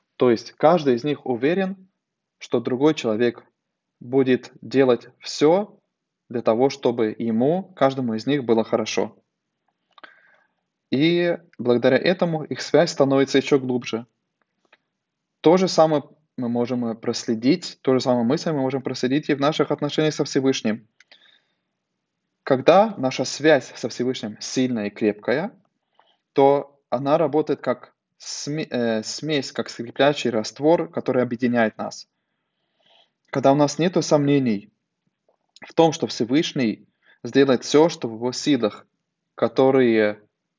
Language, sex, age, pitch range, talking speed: Russian, male, 20-39, 120-150 Hz, 125 wpm